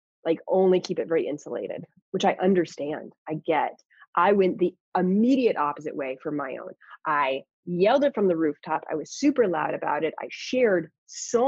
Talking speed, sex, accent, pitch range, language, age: 185 wpm, female, American, 170-240 Hz, English, 30-49